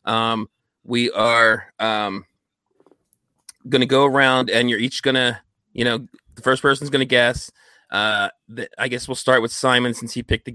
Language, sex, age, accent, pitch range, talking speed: English, male, 30-49, American, 120-135 Hz, 165 wpm